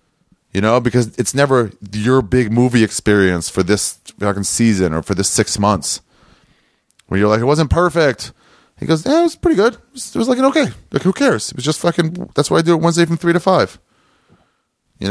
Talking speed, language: 210 wpm, English